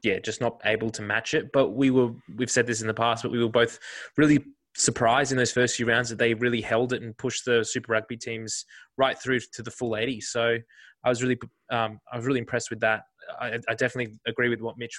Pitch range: 110-125 Hz